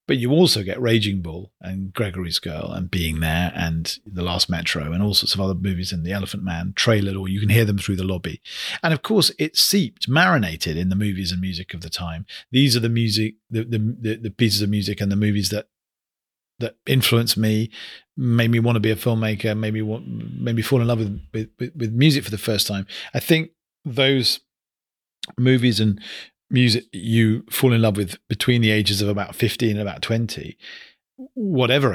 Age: 40-59